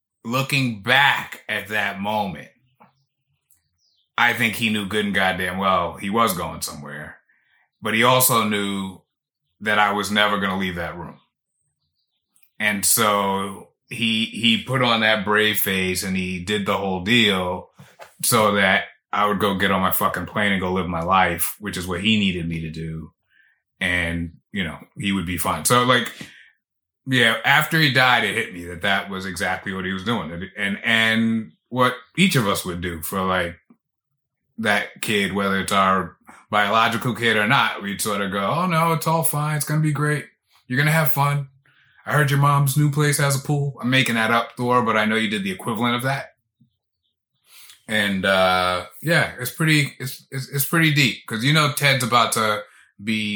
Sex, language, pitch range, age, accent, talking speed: male, English, 95-125 Hz, 30-49, American, 190 wpm